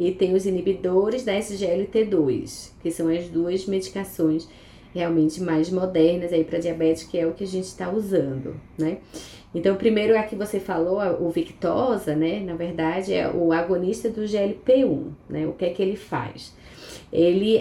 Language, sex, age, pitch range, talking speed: Portuguese, female, 20-39, 165-220 Hz, 170 wpm